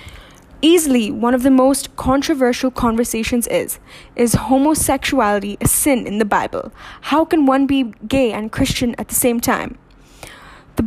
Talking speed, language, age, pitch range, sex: 150 wpm, English, 10-29, 235-280 Hz, female